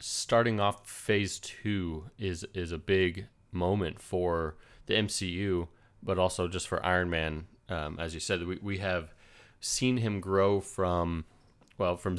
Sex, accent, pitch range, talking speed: male, American, 90-110 Hz, 155 wpm